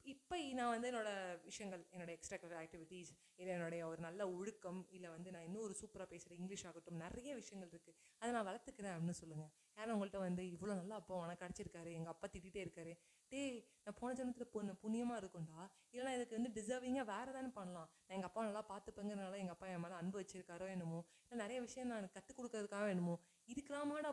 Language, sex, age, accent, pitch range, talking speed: Tamil, female, 30-49, native, 165-205 Hz, 175 wpm